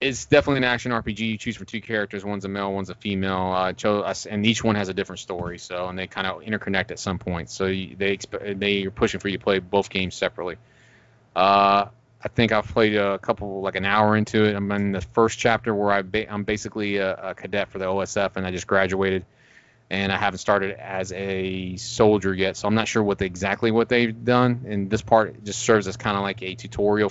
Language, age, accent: English, 30-49, American